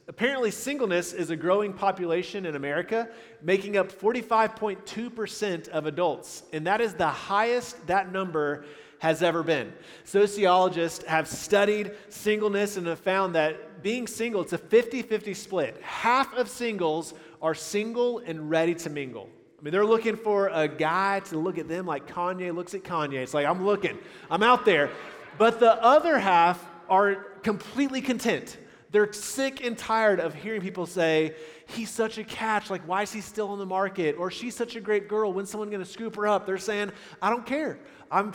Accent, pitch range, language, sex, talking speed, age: American, 165-215 Hz, English, male, 180 wpm, 30-49